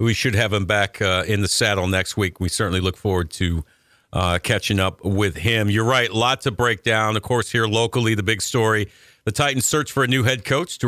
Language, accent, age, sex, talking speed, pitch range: English, American, 50-69, male, 230 wpm, 105-125 Hz